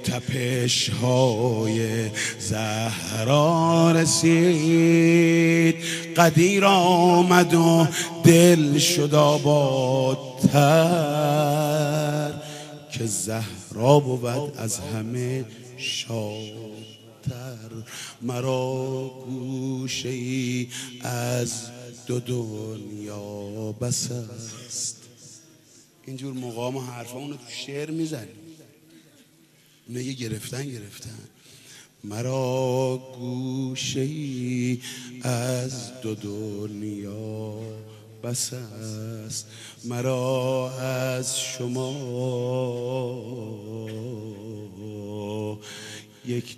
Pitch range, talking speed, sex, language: 115-150 Hz, 60 wpm, male, Persian